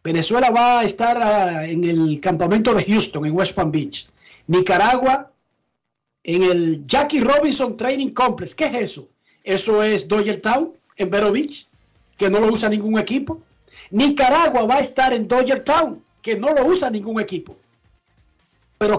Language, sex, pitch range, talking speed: Spanish, male, 180-235 Hz, 160 wpm